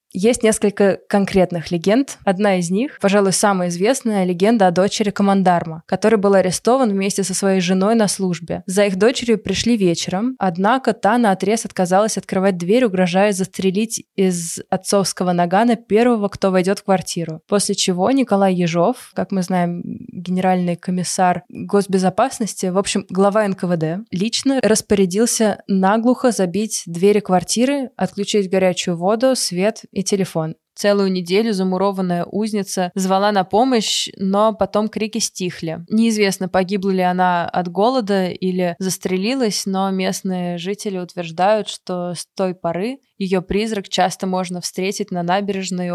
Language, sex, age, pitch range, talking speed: Russian, female, 20-39, 180-210 Hz, 135 wpm